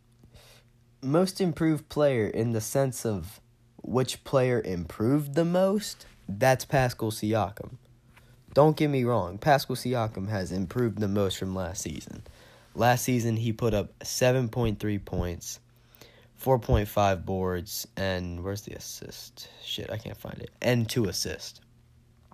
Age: 20-39